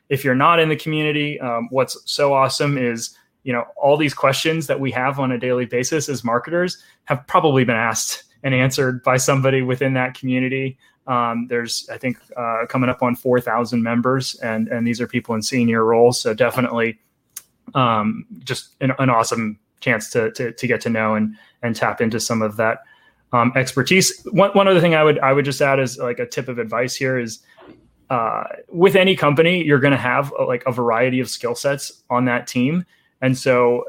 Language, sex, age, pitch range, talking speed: English, male, 20-39, 120-145 Hz, 205 wpm